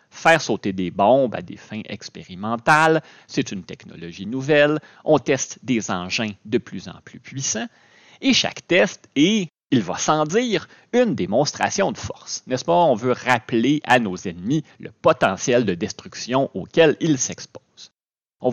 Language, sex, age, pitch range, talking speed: French, male, 30-49, 110-185 Hz, 160 wpm